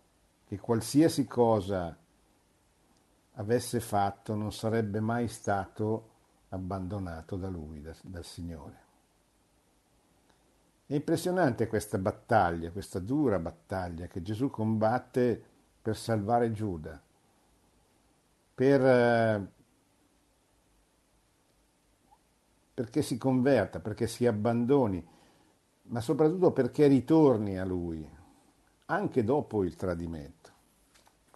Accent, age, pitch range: native, 50-69, 95-135 Hz